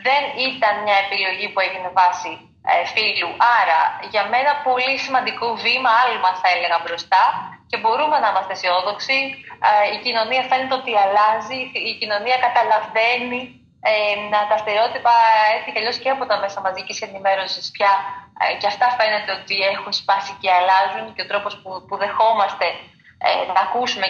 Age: 20-39